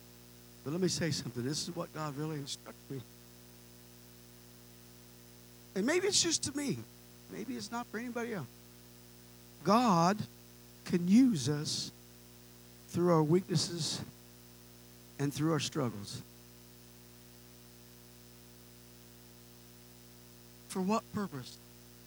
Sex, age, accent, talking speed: male, 60-79, American, 105 wpm